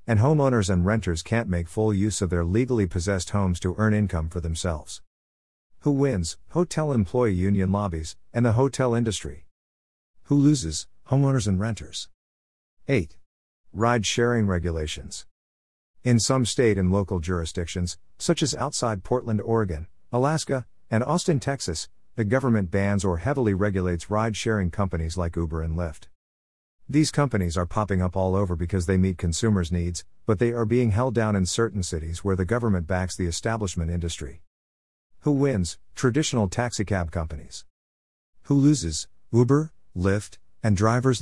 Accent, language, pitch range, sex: American, English, 85-115 Hz, male